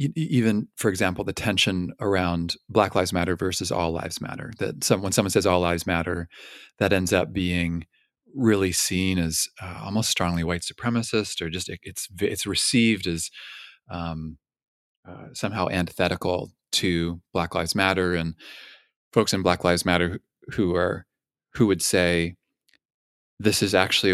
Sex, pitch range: male, 85-105 Hz